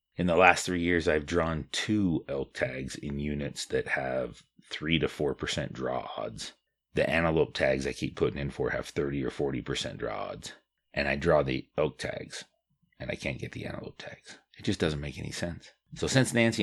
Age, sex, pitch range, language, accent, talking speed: 30-49, male, 70-90 Hz, English, American, 200 wpm